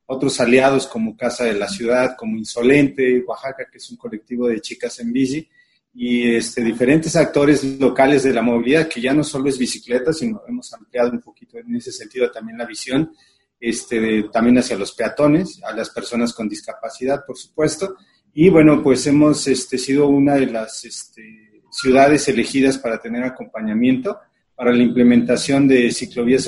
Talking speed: 170 wpm